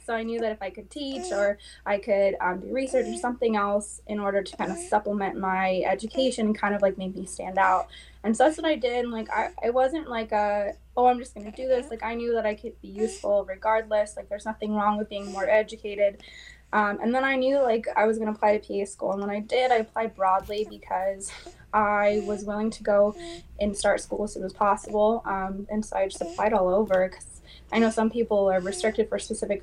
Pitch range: 200-235 Hz